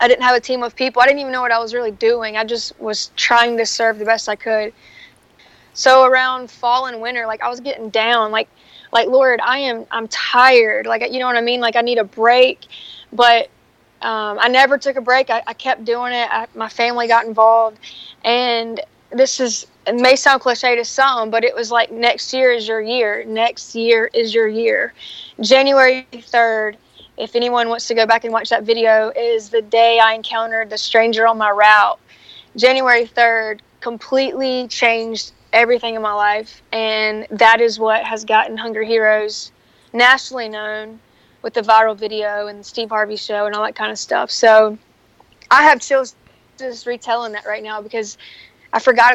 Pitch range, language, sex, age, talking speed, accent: 220-245 Hz, English, female, 20-39, 195 wpm, American